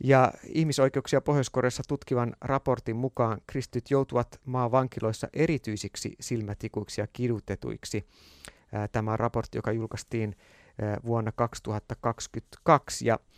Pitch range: 110-145 Hz